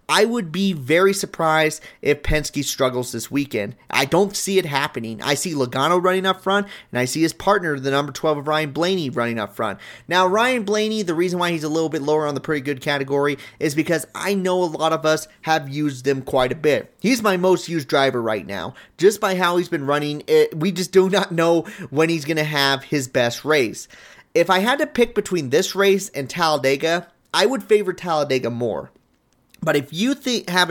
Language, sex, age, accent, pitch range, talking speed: English, male, 30-49, American, 140-190 Hz, 215 wpm